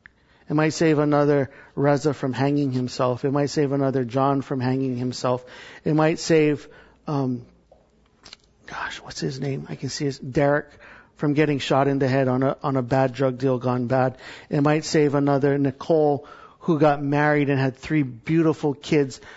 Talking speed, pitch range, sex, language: 175 wpm, 130-150 Hz, male, English